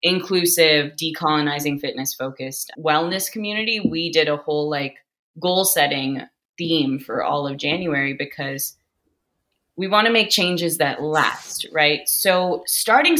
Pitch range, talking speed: 150-210 Hz, 130 wpm